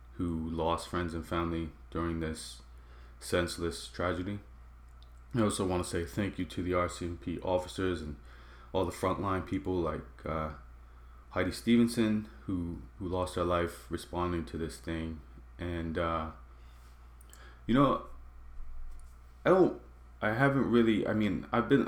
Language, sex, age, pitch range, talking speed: English, male, 30-49, 80-100 Hz, 140 wpm